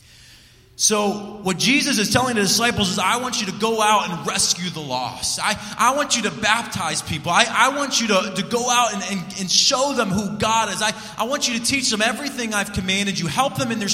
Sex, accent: male, American